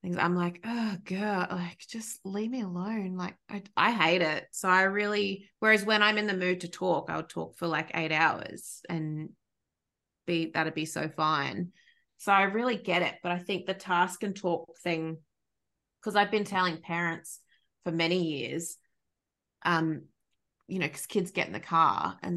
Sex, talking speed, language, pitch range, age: female, 180 wpm, English, 170-205 Hz, 20-39